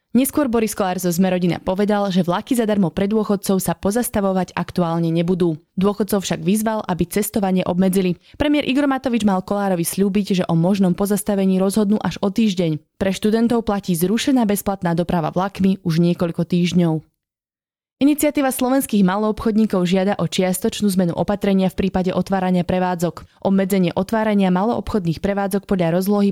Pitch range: 180-215 Hz